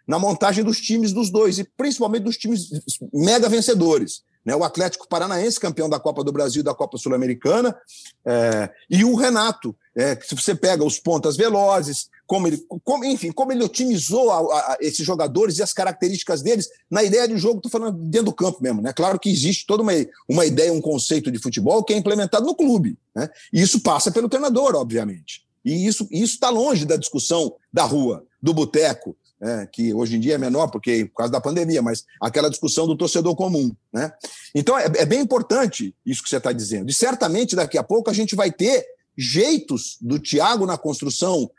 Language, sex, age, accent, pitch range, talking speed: Portuguese, male, 50-69, Brazilian, 150-230 Hz, 200 wpm